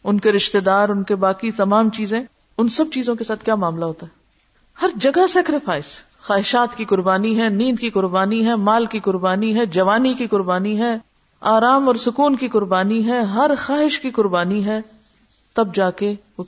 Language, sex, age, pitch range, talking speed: Urdu, female, 50-69, 185-255 Hz, 190 wpm